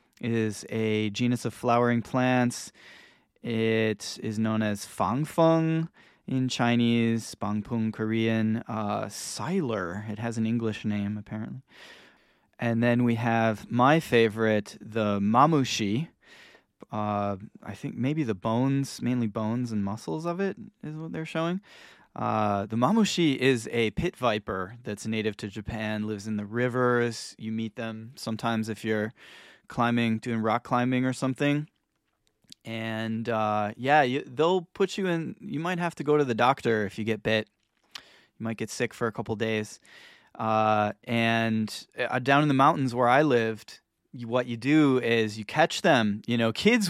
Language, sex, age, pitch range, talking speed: English, male, 20-39, 110-130 Hz, 155 wpm